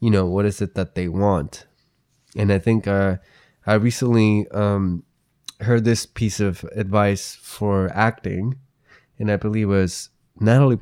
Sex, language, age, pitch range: male, English, 20-39, 95-120 Hz